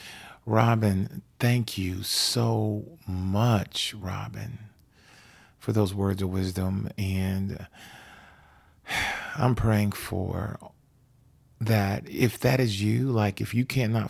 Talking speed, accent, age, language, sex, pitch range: 100 wpm, American, 40-59, English, male, 100-120 Hz